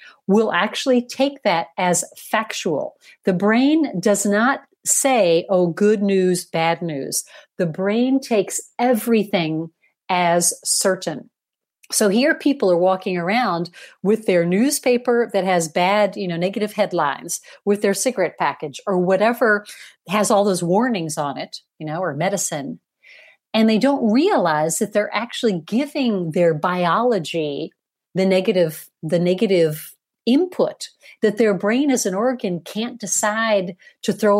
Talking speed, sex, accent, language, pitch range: 140 wpm, female, American, English, 180-235 Hz